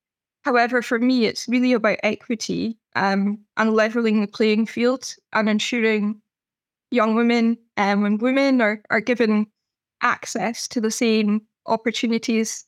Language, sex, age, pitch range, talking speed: English, female, 10-29, 210-235 Hz, 135 wpm